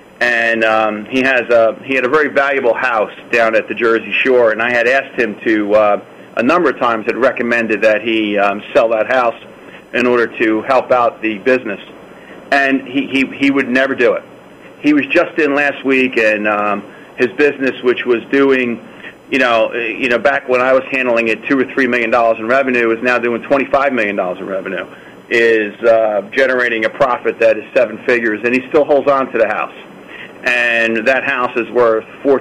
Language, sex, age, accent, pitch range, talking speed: English, male, 40-59, American, 115-140 Hz, 200 wpm